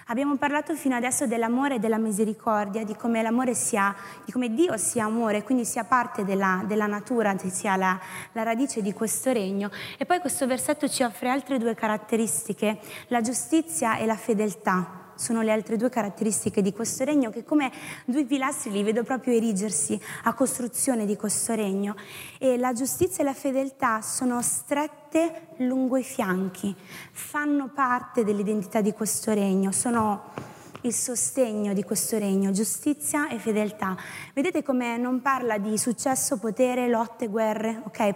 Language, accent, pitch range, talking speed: Italian, native, 210-255 Hz, 160 wpm